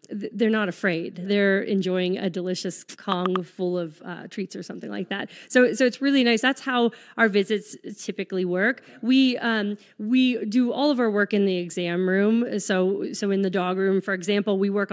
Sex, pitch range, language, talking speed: female, 190-230 Hz, English, 195 wpm